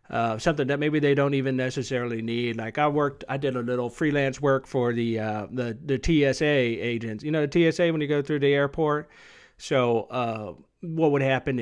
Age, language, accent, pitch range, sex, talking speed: 40-59, English, American, 115-145 Hz, male, 205 wpm